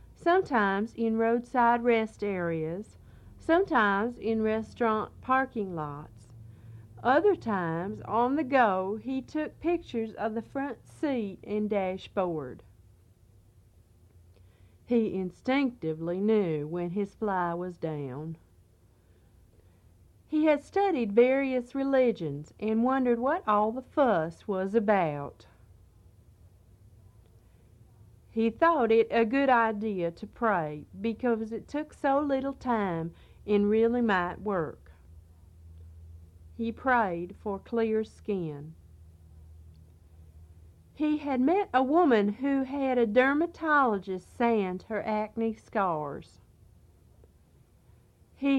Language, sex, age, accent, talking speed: English, female, 50-69, American, 100 wpm